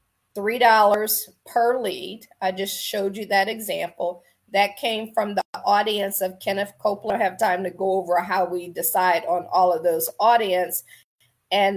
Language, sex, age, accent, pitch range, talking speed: English, female, 40-59, American, 180-215 Hz, 160 wpm